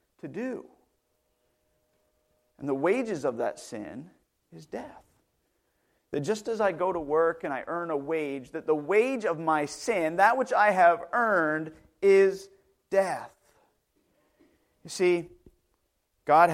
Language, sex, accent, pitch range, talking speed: English, male, American, 140-220 Hz, 140 wpm